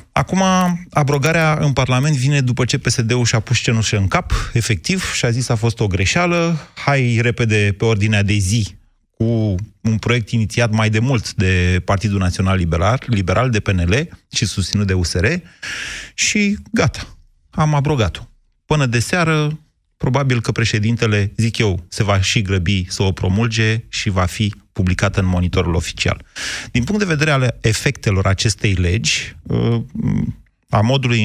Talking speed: 155 wpm